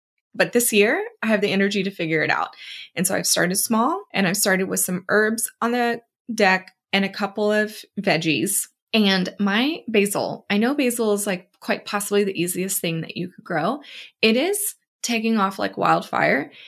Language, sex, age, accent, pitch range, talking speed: English, female, 20-39, American, 190-235 Hz, 190 wpm